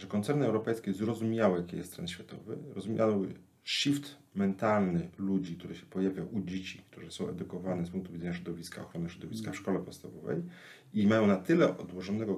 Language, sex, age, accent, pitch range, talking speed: English, male, 40-59, Polish, 95-115 Hz, 165 wpm